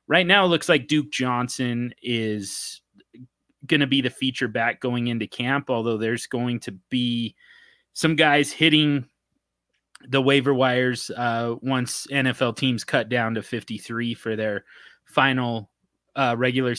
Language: English